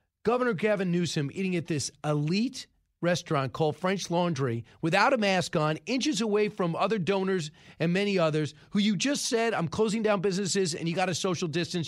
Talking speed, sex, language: 185 wpm, male, English